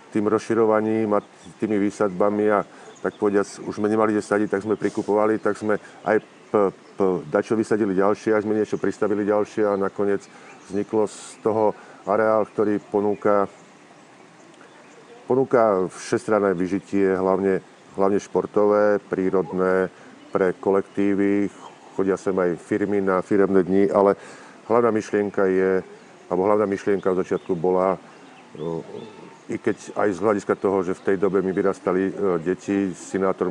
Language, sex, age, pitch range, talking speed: Slovak, male, 40-59, 95-105 Hz, 140 wpm